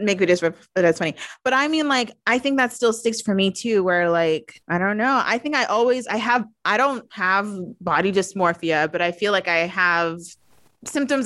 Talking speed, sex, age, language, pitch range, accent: 215 wpm, female, 20-39, English, 180-230 Hz, American